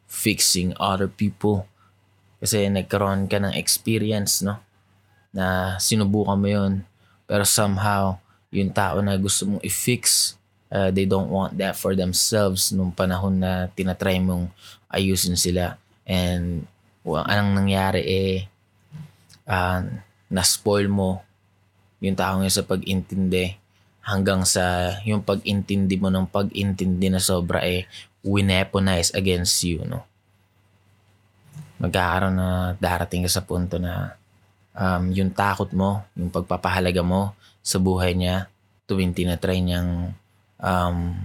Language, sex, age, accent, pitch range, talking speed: Filipino, male, 20-39, native, 90-100 Hz, 120 wpm